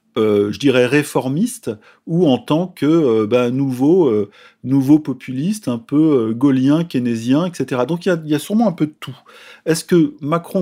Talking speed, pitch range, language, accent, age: 185 wpm, 120-160 Hz, French, French, 40-59